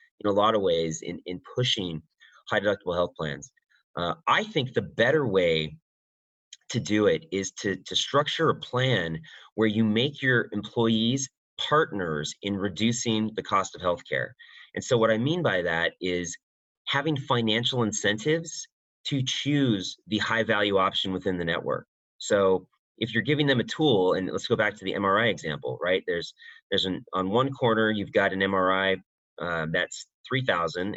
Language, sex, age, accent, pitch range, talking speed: English, male, 30-49, American, 100-145 Hz, 170 wpm